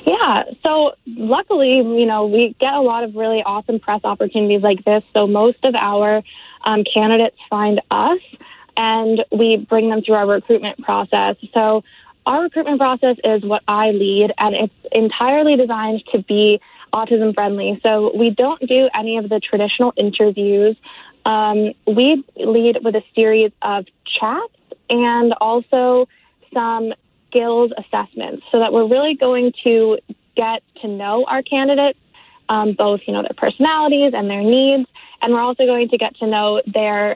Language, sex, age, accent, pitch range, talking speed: English, female, 20-39, American, 215-255 Hz, 160 wpm